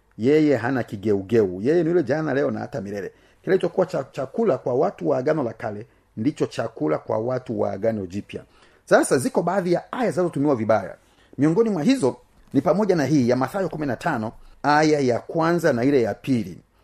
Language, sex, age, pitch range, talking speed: Swahili, male, 40-59, 120-160 Hz, 180 wpm